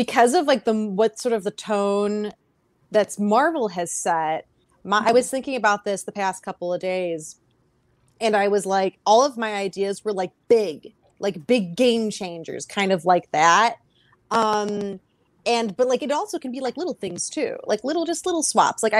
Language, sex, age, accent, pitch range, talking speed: English, female, 30-49, American, 185-225 Hz, 190 wpm